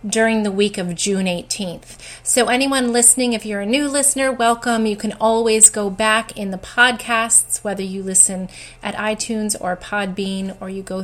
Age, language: 30-49, English